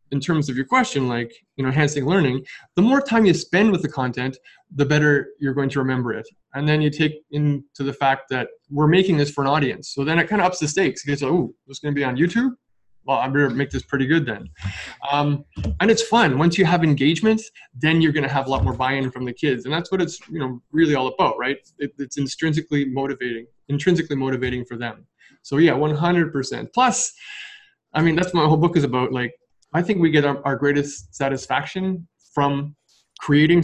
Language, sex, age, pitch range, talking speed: English, male, 20-39, 130-160 Hz, 220 wpm